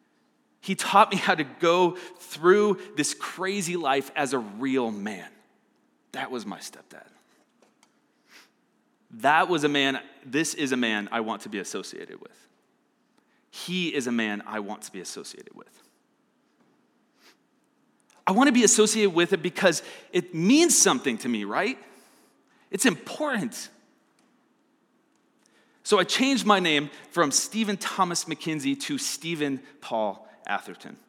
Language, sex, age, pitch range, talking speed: English, male, 30-49, 135-210 Hz, 140 wpm